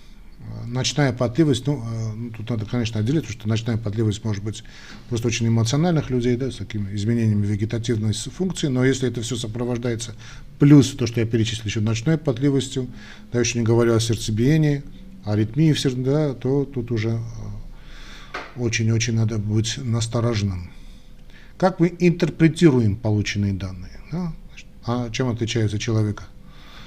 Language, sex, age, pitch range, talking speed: Russian, male, 40-59, 110-140 Hz, 145 wpm